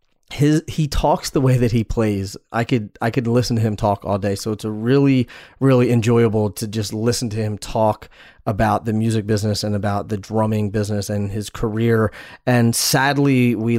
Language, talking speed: English, 195 wpm